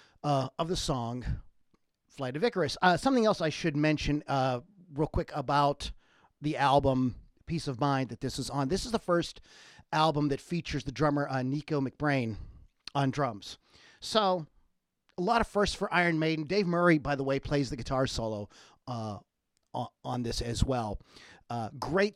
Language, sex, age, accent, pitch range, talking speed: English, male, 40-59, American, 135-170 Hz, 175 wpm